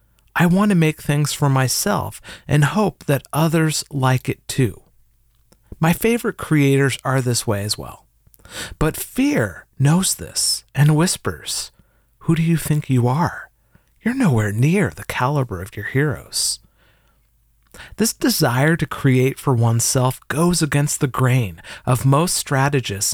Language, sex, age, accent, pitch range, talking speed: English, male, 40-59, American, 120-155 Hz, 145 wpm